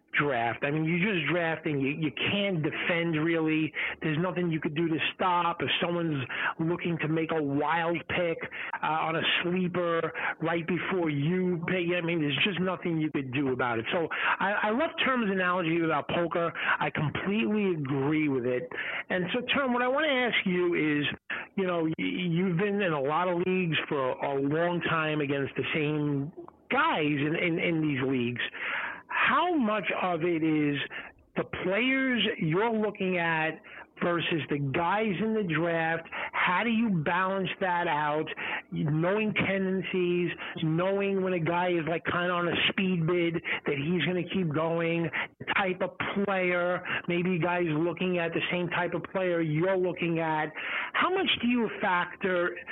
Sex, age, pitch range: male, 50-69, 160-190 Hz